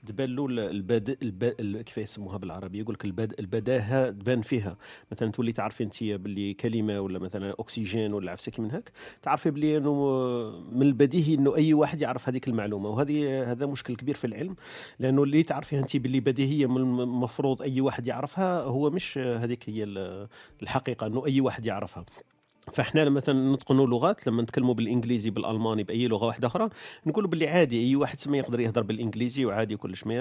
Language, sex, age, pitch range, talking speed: Arabic, male, 40-59, 110-140 Hz, 165 wpm